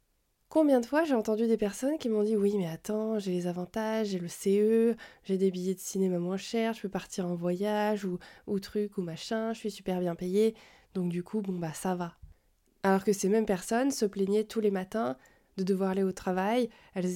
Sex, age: female, 20-39